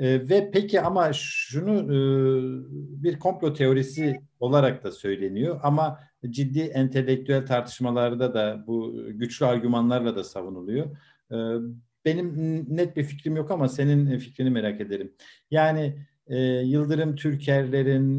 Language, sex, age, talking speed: Turkish, male, 50-69, 110 wpm